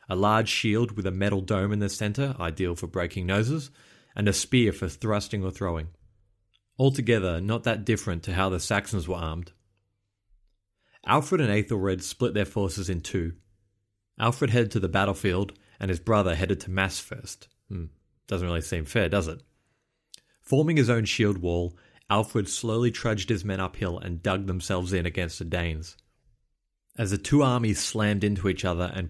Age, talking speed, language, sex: 30-49, 175 wpm, English, male